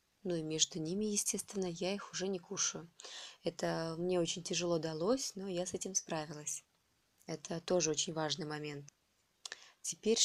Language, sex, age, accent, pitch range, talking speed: Russian, female, 20-39, native, 160-200 Hz, 150 wpm